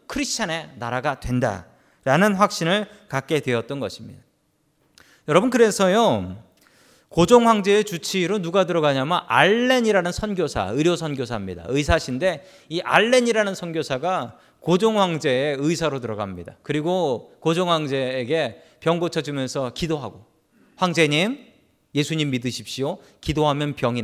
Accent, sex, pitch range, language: native, male, 135-200 Hz, Korean